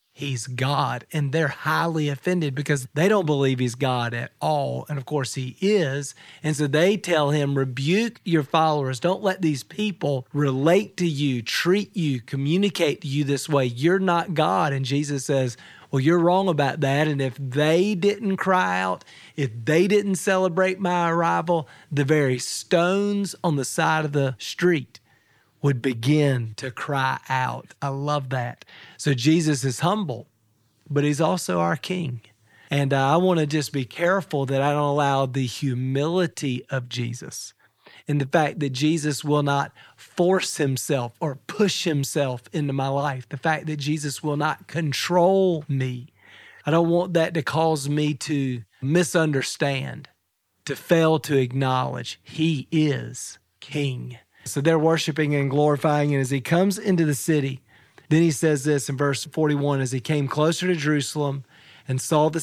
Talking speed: 165 wpm